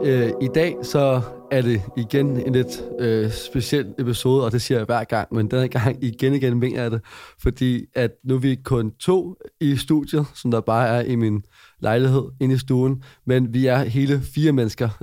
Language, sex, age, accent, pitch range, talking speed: Danish, male, 30-49, native, 115-135 Hz, 190 wpm